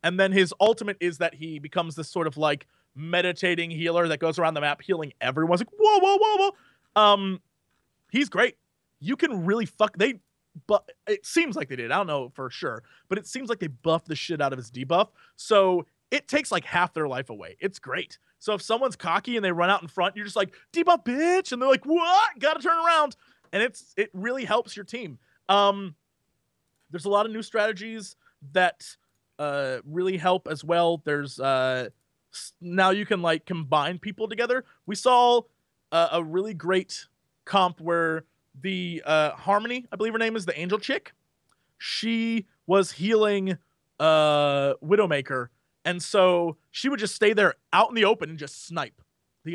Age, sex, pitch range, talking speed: 30-49, male, 160-220 Hz, 195 wpm